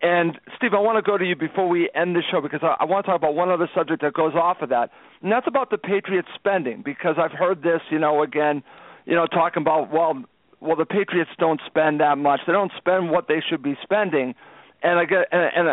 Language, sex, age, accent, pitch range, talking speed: English, male, 50-69, American, 155-185 Hz, 245 wpm